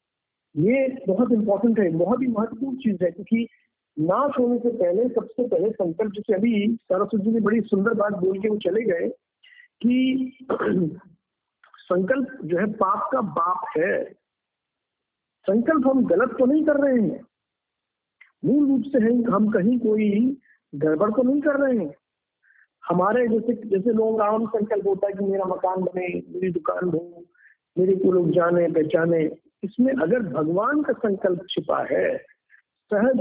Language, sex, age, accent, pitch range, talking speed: Hindi, male, 50-69, native, 185-245 Hz, 155 wpm